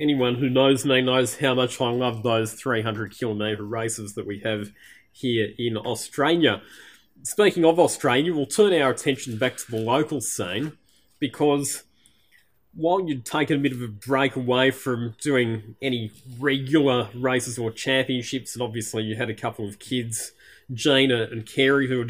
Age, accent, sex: 20-39, Australian, male